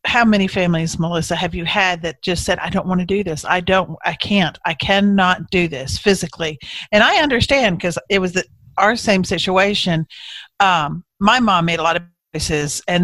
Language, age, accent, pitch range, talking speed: English, 50-69, American, 165-200 Hz, 200 wpm